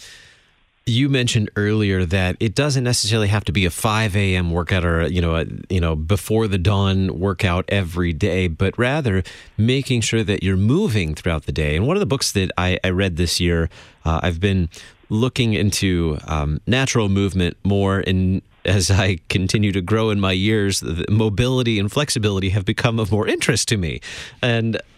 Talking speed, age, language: 185 wpm, 30-49, English